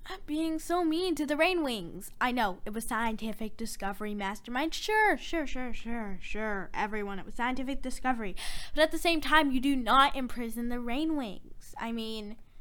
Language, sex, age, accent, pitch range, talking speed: English, female, 10-29, American, 220-310 Hz, 165 wpm